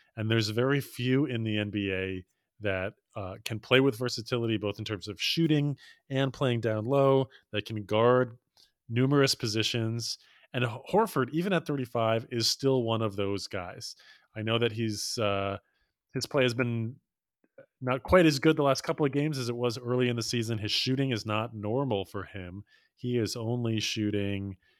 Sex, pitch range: male, 105-130 Hz